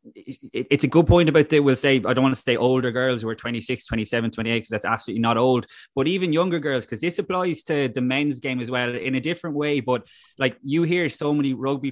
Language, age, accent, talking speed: English, 20-39, Irish, 245 wpm